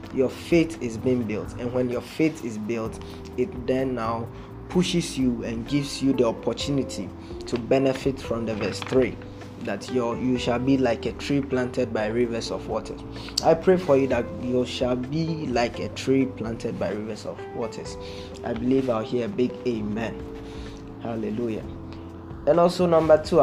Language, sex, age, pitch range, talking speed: English, male, 20-39, 105-135 Hz, 175 wpm